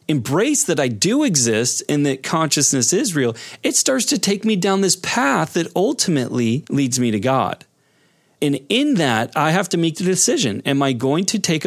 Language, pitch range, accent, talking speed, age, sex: English, 120-160 Hz, American, 195 wpm, 30-49, male